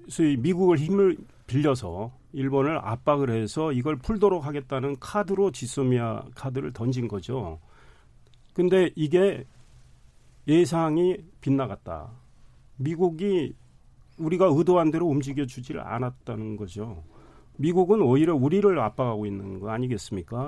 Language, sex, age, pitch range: Korean, male, 40-59, 120-160 Hz